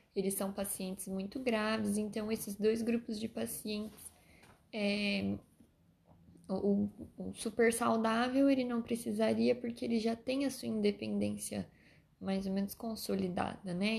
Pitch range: 185-220 Hz